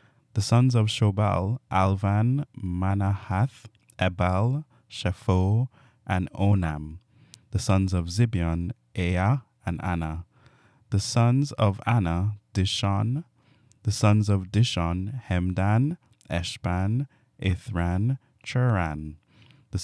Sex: male